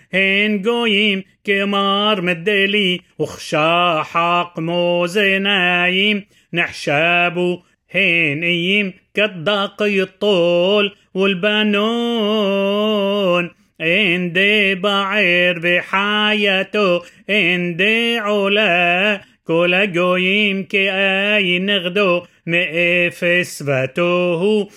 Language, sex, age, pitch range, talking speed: Hebrew, male, 30-49, 175-205 Hz, 60 wpm